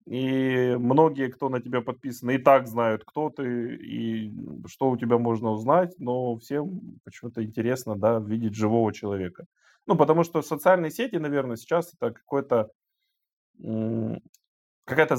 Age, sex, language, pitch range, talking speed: 20-39, male, Russian, 105-130 Hz, 130 wpm